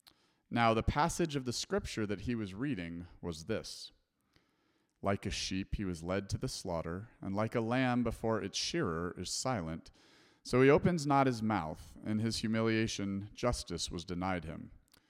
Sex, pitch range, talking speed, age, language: male, 95-125 Hz, 170 wpm, 40-59, English